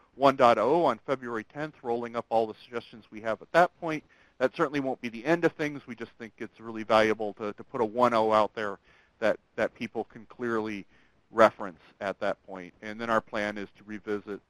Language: English